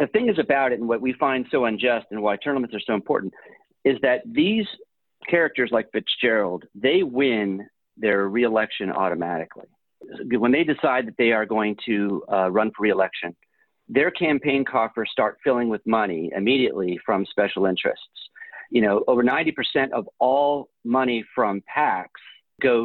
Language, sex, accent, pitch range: English, male, American, 105-135 Hz